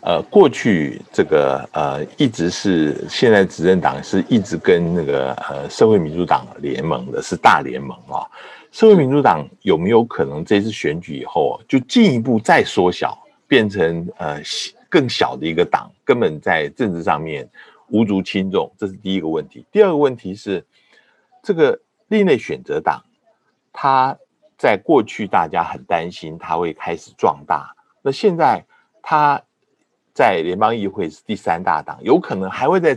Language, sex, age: Chinese, male, 60-79